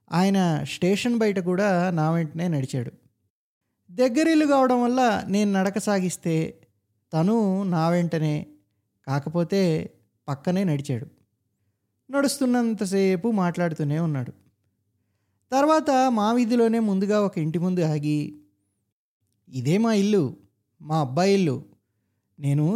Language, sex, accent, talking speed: Telugu, male, native, 100 wpm